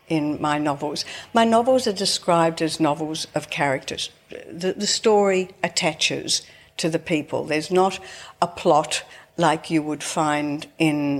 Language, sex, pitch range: English, female, 160-195 Hz